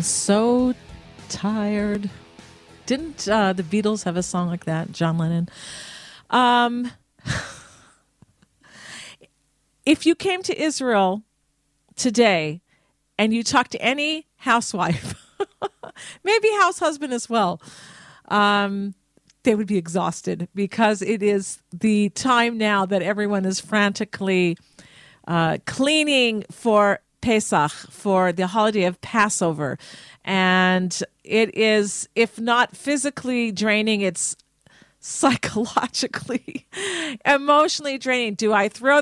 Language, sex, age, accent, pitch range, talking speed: English, female, 40-59, American, 180-245 Hz, 105 wpm